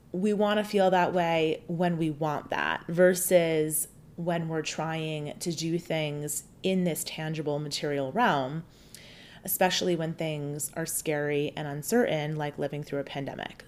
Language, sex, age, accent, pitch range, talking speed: English, female, 30-49, American, 160-210 Hz, 150 wpm